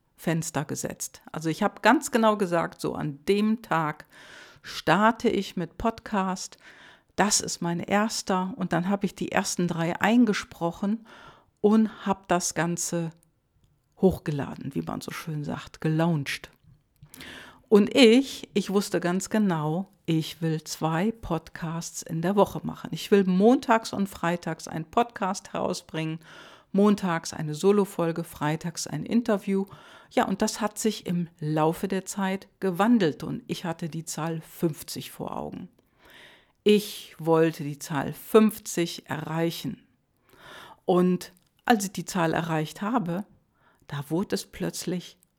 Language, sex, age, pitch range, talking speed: German, female, 50-69, 160-200 Hz, 135 wpm